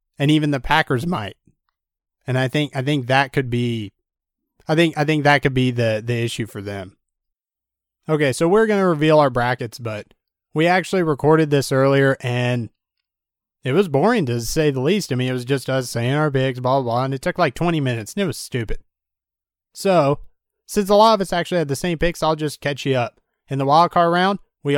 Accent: American